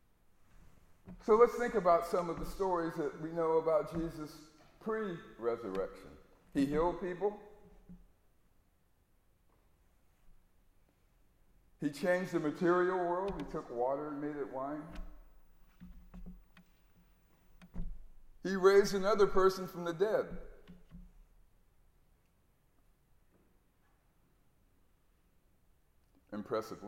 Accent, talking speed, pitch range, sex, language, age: American, 85 wpm, 130-195 Hz, male, English, 50-69